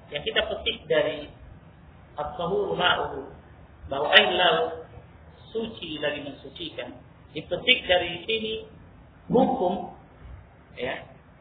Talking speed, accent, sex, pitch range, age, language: 90 wpm, native, male, 140-225 Hz, 50-69, Indonesian